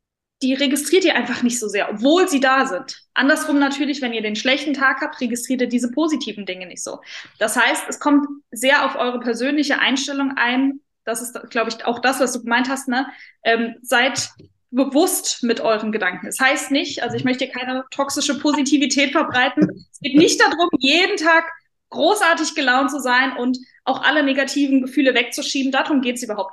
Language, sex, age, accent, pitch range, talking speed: German, female, 20-39, German, 235-285 Hz, 190 wpm